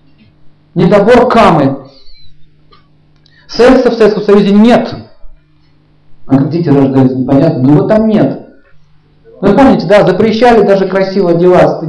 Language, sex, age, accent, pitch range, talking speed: Russian, male, 40-59, native, 150-200 Hz, 115 wpm